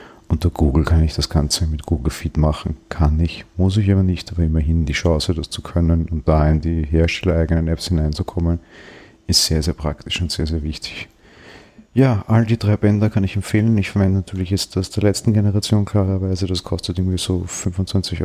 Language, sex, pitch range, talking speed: German, male, 80-95 Hz, 200 wpm